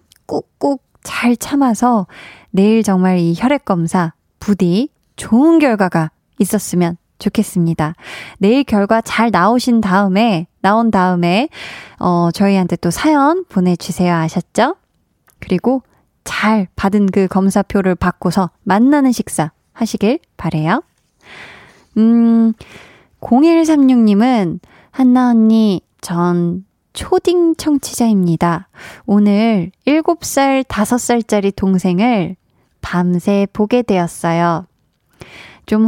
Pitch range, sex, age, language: 185-250 Hz, female, 20-39, Korean